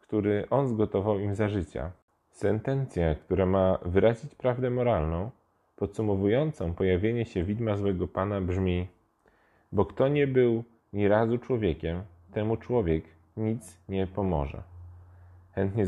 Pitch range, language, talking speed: 90-110 Hz, Polish, 120 wpm